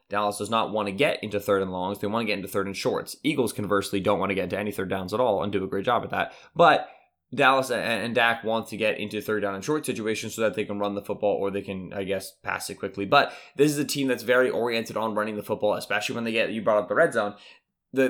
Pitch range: 105-135 Hz